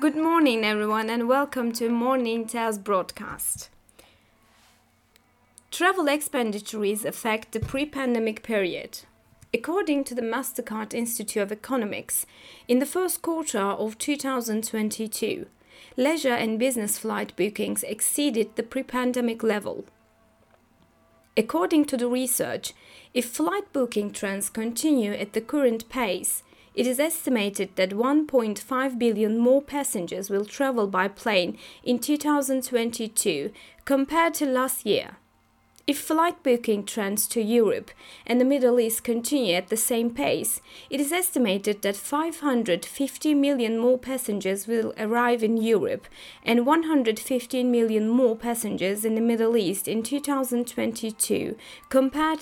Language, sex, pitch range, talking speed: English, female, 220-275 Hz, 120 wpm